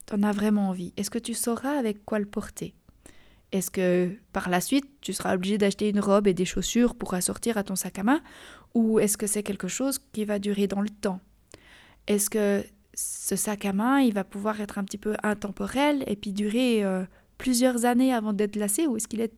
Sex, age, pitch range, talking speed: female, 20-39, 195-230 Hz, 225 wpm